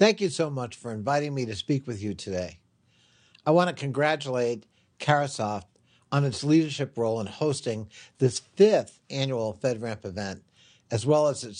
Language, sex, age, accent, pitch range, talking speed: English, male, 60-79, American, 110-150 Hz, 165 wpm